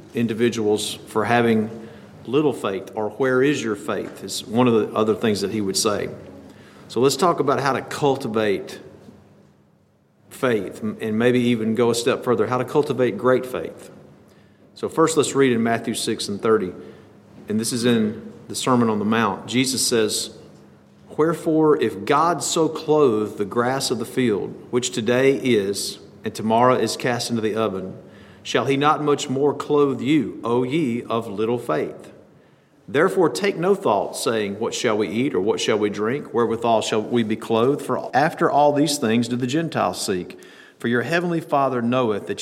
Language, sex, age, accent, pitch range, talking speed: English, male, 40-59, American, 110-135 Hz, 180 wpm